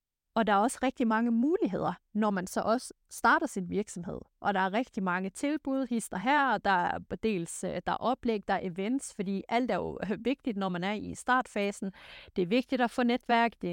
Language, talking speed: Danish, 215 wpm